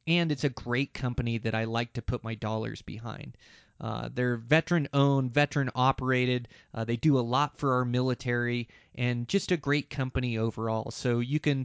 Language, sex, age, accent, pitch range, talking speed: English, male, 30-49, American, 115-140 Hz, 170 wpm